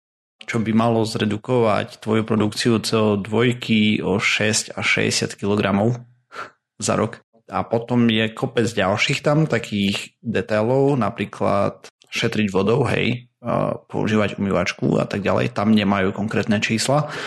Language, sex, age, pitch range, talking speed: Slovak, male, 30-49, 100-120 Hz, 120 wpm